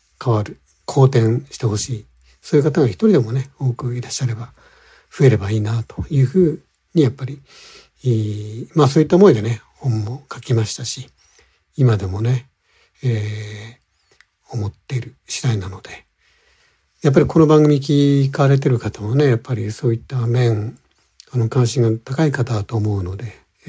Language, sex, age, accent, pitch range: Japanese, male, 60-79, native, 115-140 Hz